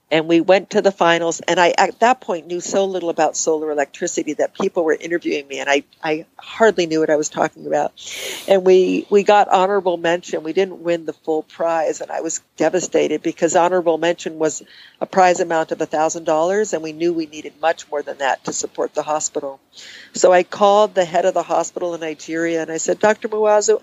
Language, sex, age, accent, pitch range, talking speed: English, female, 50-69, American, 155-185 Hz, 215 wpm